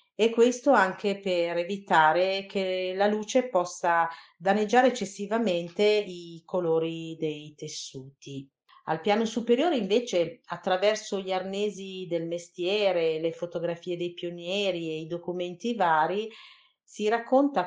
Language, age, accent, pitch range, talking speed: Italian, 40-59, native, 165-205 Hz, 115 wpm